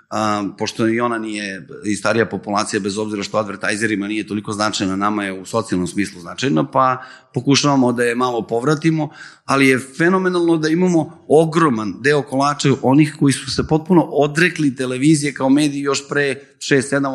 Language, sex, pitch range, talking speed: Croatian, male, 110-145 Hz, 170 wpm